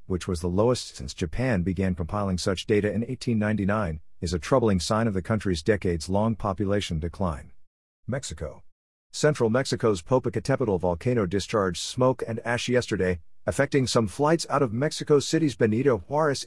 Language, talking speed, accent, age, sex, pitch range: English, 150 wpm, American, 50-69, male, 100-130 Hz